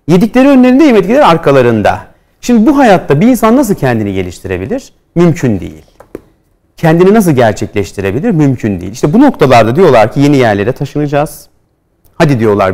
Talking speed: 135 wpm